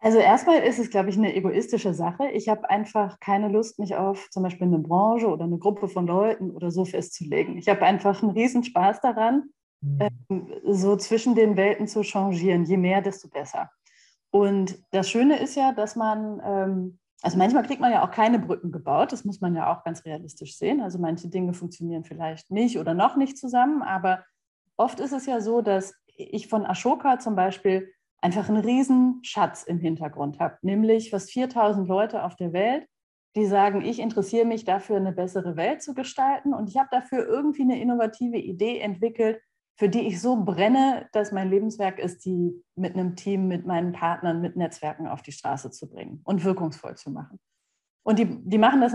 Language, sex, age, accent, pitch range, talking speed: German, female, 30-49, German, 180-225 Hz, 190 wpm